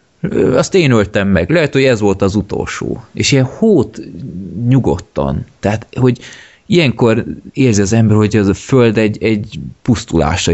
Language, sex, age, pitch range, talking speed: Hungarian, male, 20-39, 90-110 Hz, 155 wpm